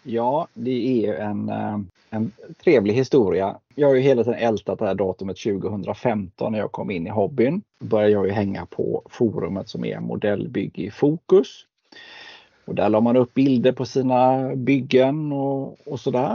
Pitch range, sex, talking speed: 110-150 Hz, male, 175 wpm